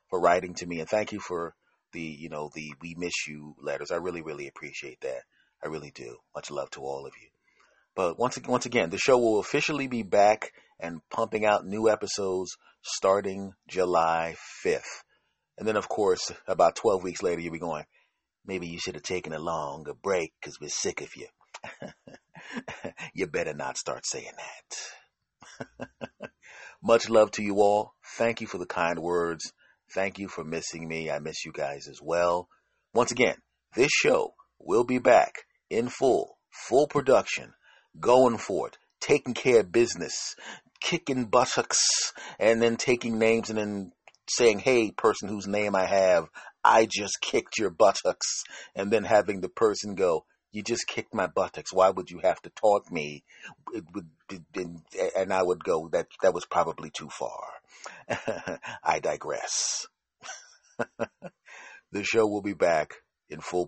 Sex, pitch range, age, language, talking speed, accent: male, 85-115 Hz, 30-49, English, 165 wpm, American